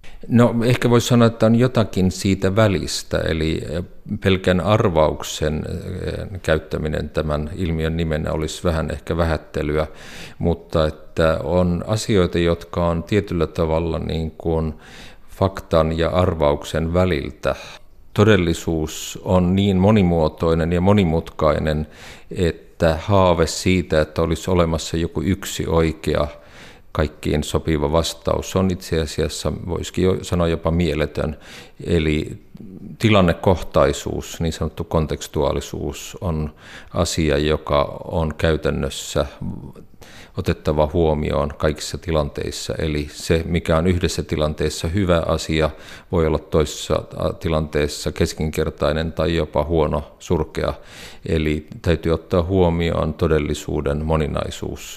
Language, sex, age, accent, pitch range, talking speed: Finnish, male, 50-69, native, 75-90 Hz, 105 wpm